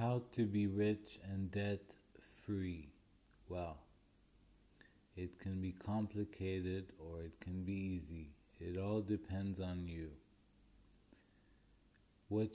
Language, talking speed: English, 105 wpm